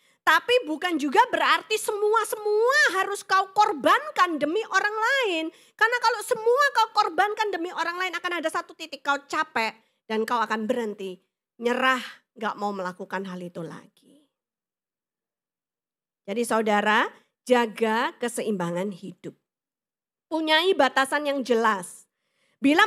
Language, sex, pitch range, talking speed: Indonesian, female, 245-355 Hz, 120 wpm